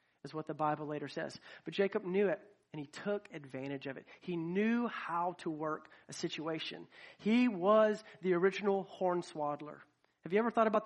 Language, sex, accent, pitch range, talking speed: English, male, American, 180-225 Hz, 190 wpm